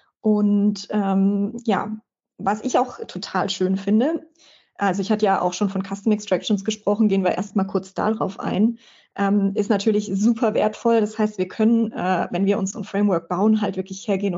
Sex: female